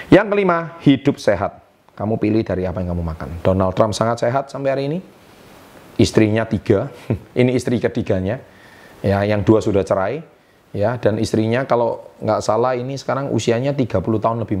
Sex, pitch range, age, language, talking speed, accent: male, 100-125 Hz, 30-49, Indonesian, 165 wpm, native